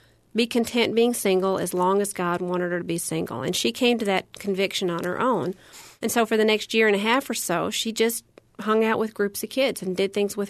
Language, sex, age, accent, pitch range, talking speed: English, female, 40-59, American, 180-215 Hz, 255 wpm